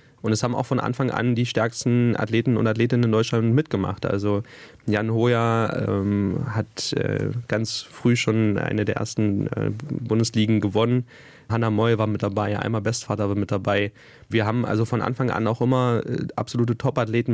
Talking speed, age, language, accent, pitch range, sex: 175 wpm, 20-39, German, German, 110-125 Hz, male